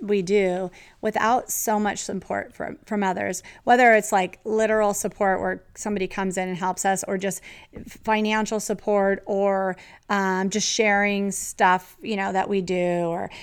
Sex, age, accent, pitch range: female, 30-49, American, 185-215 Hz